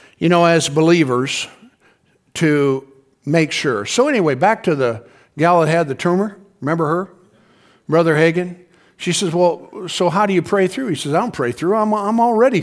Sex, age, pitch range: male, 50-69, 170-230 Hz